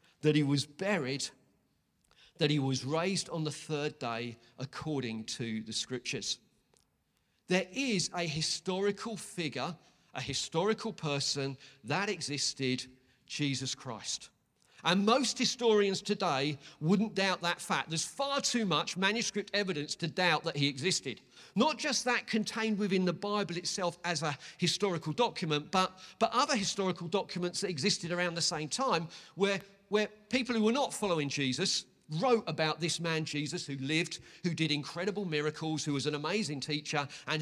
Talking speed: 150 wpm